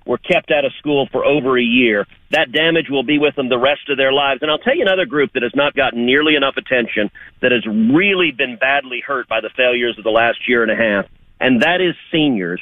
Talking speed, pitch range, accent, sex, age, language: 250 wpm, 130-175 Hz, American, male, 40-59, English